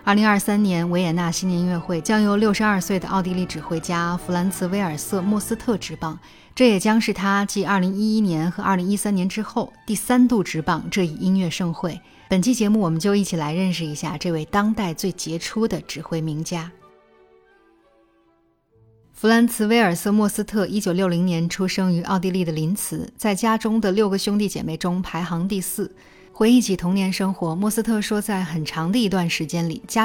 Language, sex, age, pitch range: Chinese, female, 10-29, 170-215 Hz